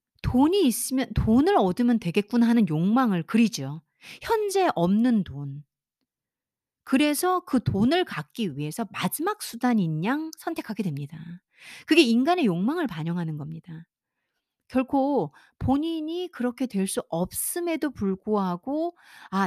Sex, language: female, Korean